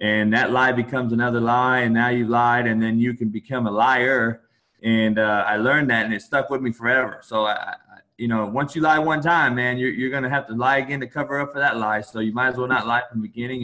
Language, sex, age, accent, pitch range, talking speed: English, male, 20-39, American, 110-130 Hz, 265 wpm